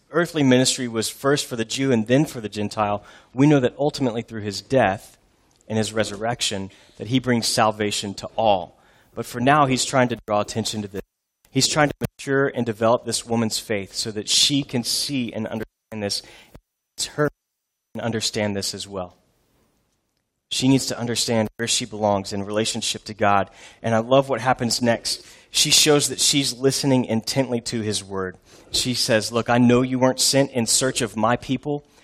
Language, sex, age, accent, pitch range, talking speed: English, male, 30-49, American, 110-130 Hz, 190 wpm